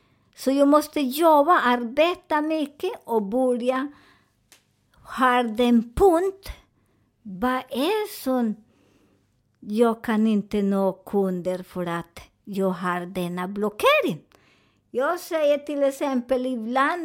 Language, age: Swedish, 50-69